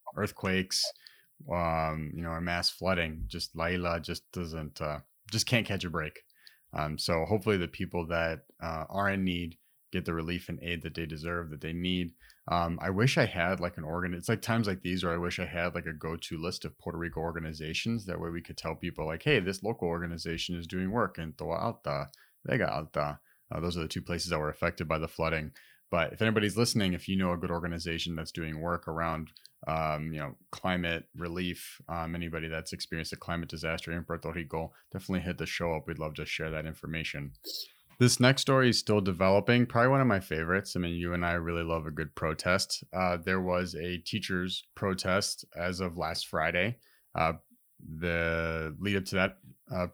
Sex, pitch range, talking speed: male, 80-95 Hz, 210 wpm